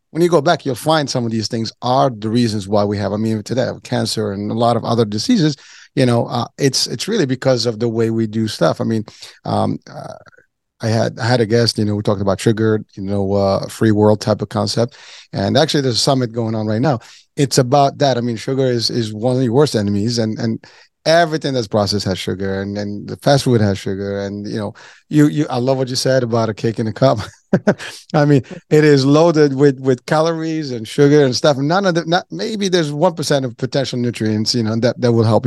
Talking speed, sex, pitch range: 245 wpm, male, 110-140 Hz